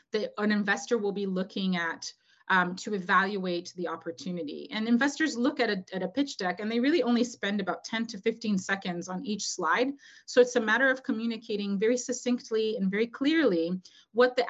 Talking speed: 185 wpm